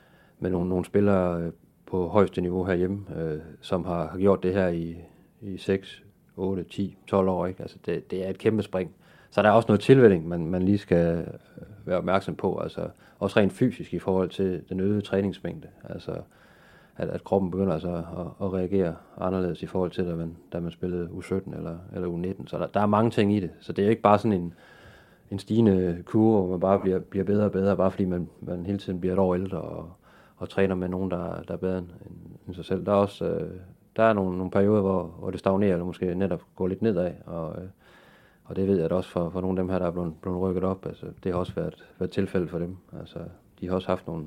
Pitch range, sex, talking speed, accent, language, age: 90-100 Hz, male, 230 wpm, native, Danish, 30-49